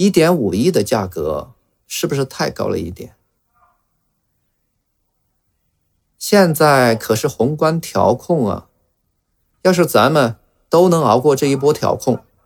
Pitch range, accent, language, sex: 100-160 Hz, native, Chinese, male